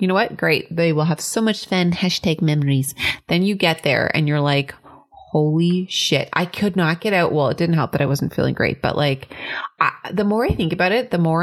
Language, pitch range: English, 155-195 Hz